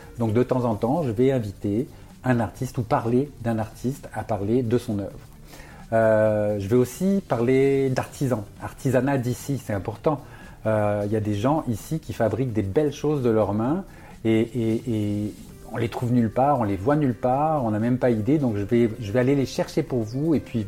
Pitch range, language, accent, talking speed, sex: 110-135 Hz, French, French, 210 wpm, male